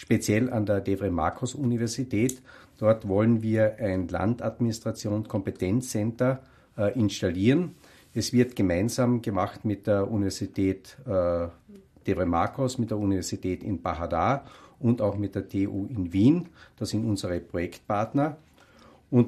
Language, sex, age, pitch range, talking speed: English, male, 50-69, 100-120 Hz, 110 wpm